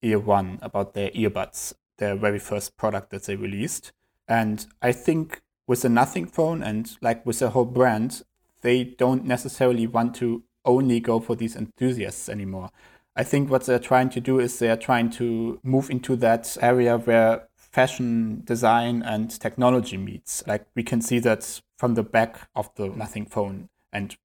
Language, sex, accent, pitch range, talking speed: English, male, German, 110-125 Hz, 175 wpm